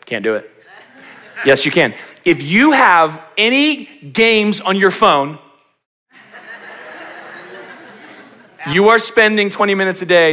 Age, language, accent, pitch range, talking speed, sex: 30-49, English, American, 150-200 Hz, 120 wpm, male